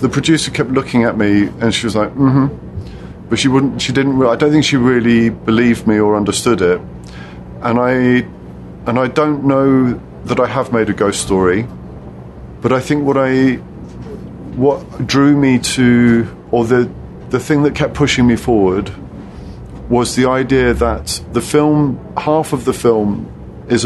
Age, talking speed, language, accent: 40-59, 170 wpm, English, British